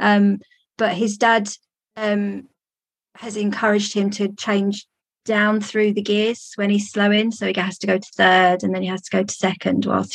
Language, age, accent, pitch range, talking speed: English, 30-49, British, 205-255 Hz, 195 wpm